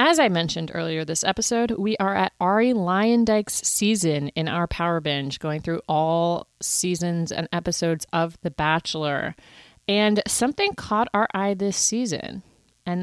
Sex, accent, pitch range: female, American, 170-215 Hz